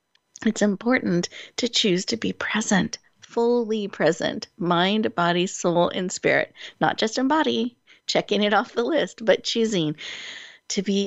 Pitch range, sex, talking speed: 175-225 Hz, female, 145 wpm